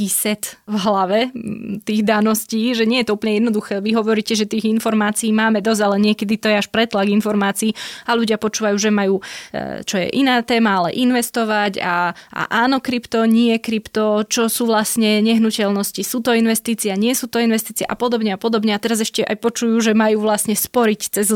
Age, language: 20-39, Slovak